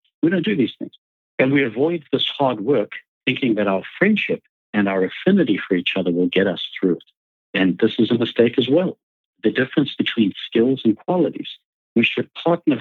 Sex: male